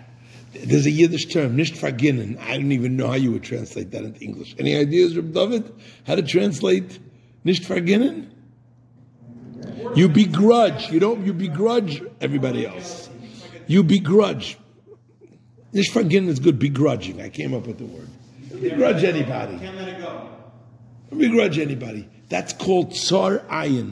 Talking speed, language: 140 wpm, English